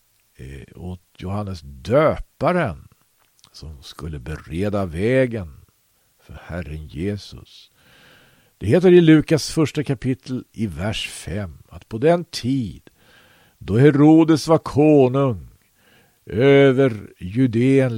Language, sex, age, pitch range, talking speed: Swedish, male, 50-69, 95-130 Hz, 95 wpm